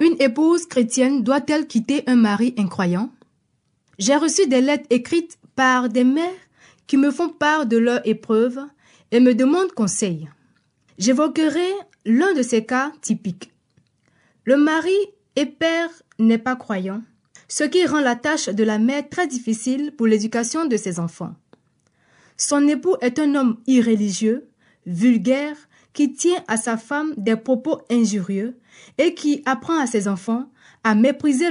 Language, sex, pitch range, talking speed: French, female, 220-300 Hz, 150 wpm